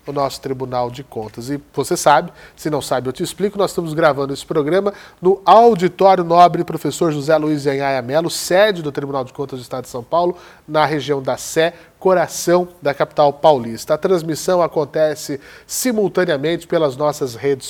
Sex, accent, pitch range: male, Brazilian, 145-180 Hz